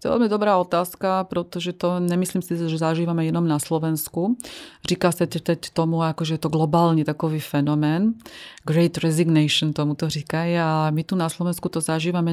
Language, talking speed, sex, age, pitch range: Slovak, 180 wpm, female, 30-49, 155-175 Hz